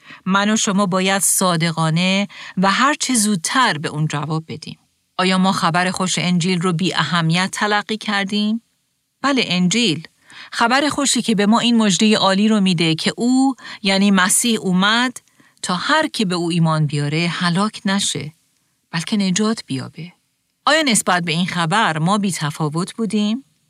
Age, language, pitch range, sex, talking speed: 40-59, Persian, 170-230 Hz, female, 150 wpm